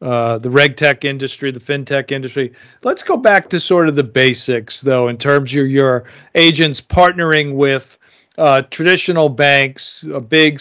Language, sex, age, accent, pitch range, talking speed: English, male, 50-69, American, 135-155 Hz, 165 wpm